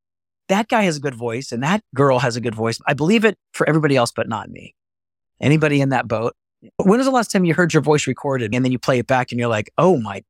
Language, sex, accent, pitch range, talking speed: English, male, American, 115-145 Hz, 275 wpm